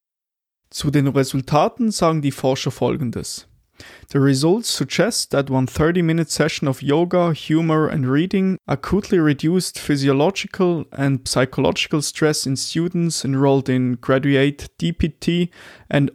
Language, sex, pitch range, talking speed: German, male, 130-165 Hz, 120 wpm